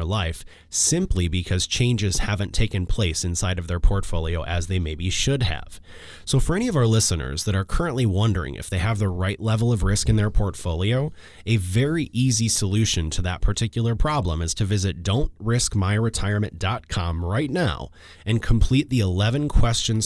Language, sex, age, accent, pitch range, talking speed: English, male, 30-49, American, 90-120 Hz, 165 wpm